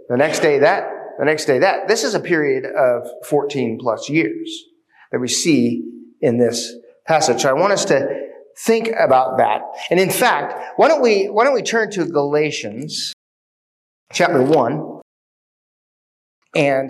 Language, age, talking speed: English, 40-59, 160 wpm